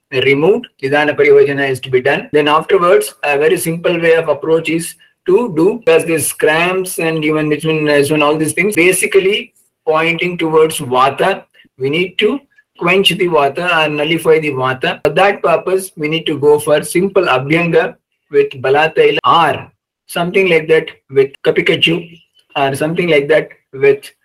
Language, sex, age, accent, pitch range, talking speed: English, male, 50-69, Indian, 150-195 Hz, 160 wpm